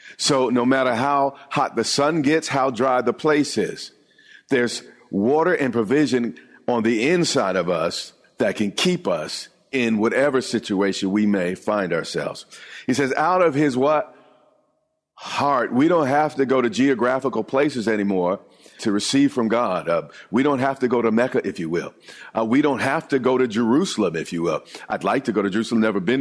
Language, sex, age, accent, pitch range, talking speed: English, male, 50-69, American, 115-135 Hz, 190 wpm